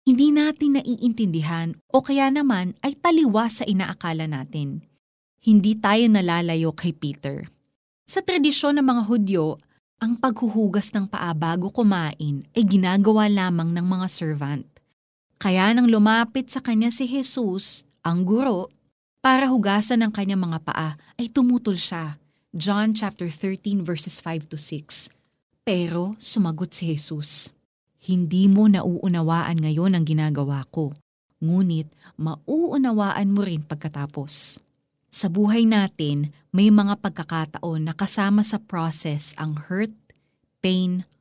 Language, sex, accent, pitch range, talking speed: Filipino, female, native, 160-215 Hz, 125 wpm